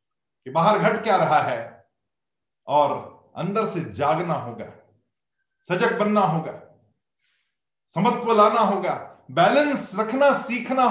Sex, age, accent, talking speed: male, 50-69, native, 110 wpm